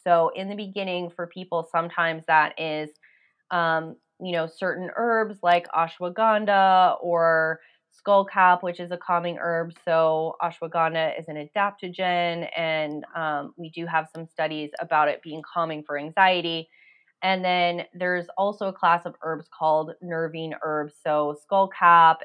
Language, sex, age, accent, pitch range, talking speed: English, female, 20-39, American, 160-185 Hz, 145 wpm